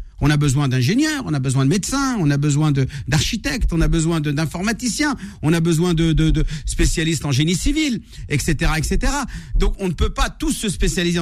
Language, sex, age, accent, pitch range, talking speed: French, male, 50-69, French, 145-205 Hz, 200 wpm